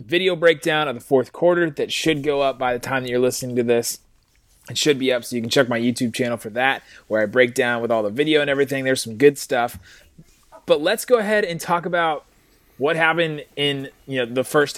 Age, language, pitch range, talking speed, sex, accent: 20-39, English, 120-150 Hz, 240 wpm, male, American